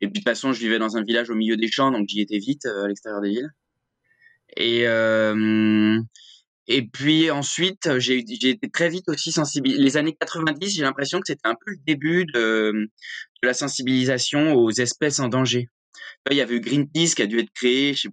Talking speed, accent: 220 wpm, French